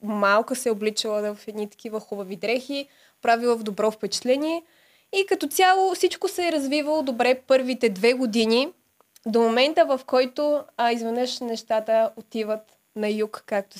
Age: 20-39